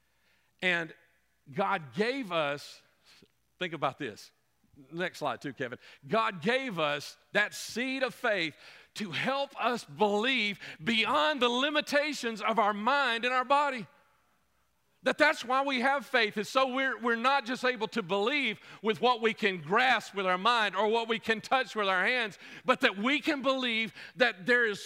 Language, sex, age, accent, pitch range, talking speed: English, male, 50-69, American, 200-265 Hz, 170 wpm